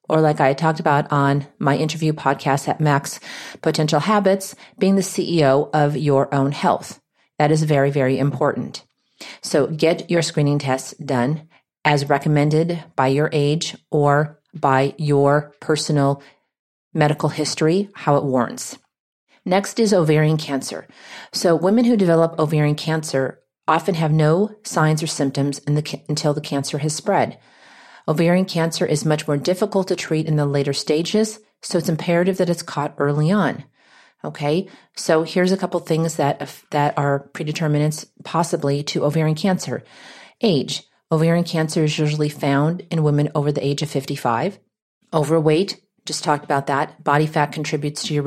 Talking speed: 155 wpm